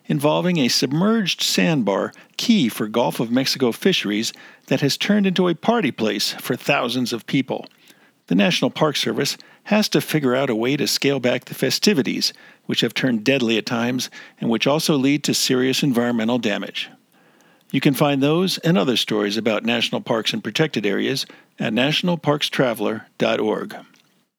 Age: 50-69